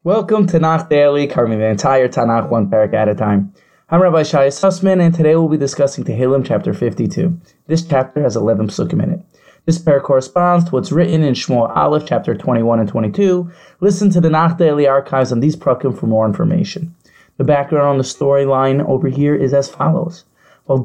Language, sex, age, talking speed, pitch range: English, male, 20-39, 195 wpm, 130-160 Hz